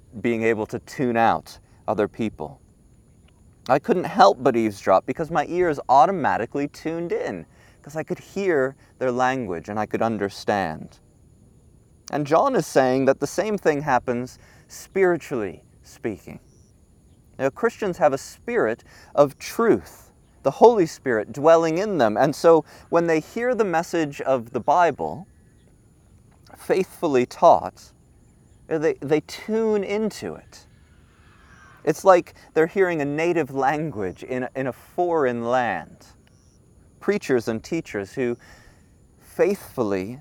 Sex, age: male, 30-49